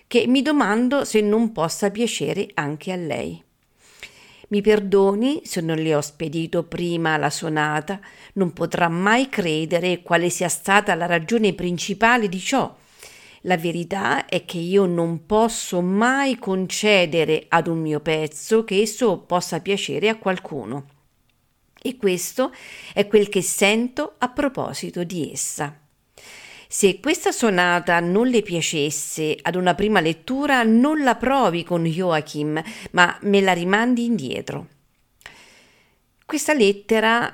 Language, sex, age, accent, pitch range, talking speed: Italian, female, 50-69, native, 160-225 Hz, 135 wpm